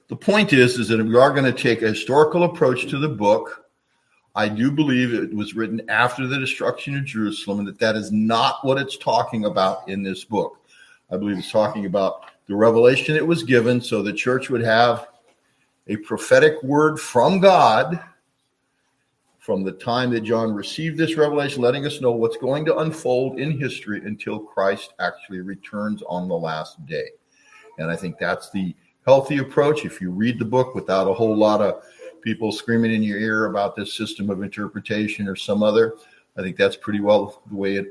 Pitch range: 105-150 Hz